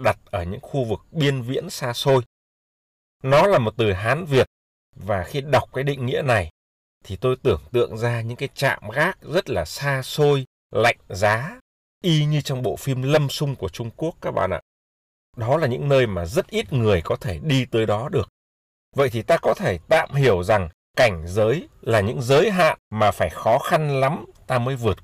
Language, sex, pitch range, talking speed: Vietnamese, male, 100-140 Hz, 205 wpm